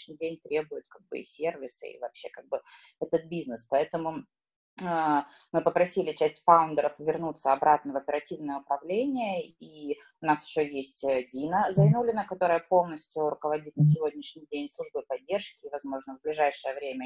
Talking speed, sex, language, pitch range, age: 150 wpm, female, Russian, 145-185 Hz, 20-39